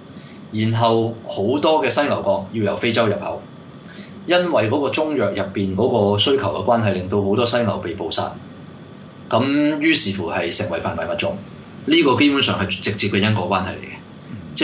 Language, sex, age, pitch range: Chinese, male, 20-39, 95-120 Hz